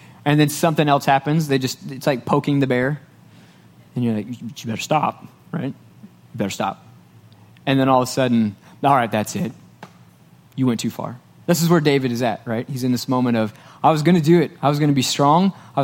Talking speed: 220 wpm